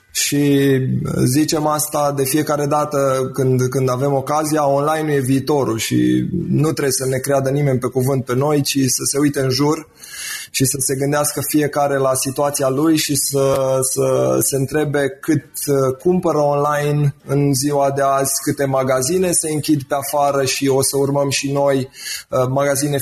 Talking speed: 170 wpm